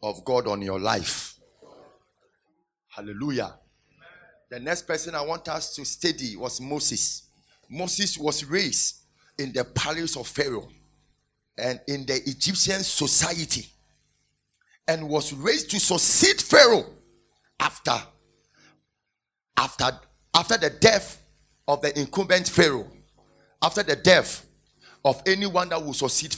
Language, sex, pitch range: English, male, 130-165 Hz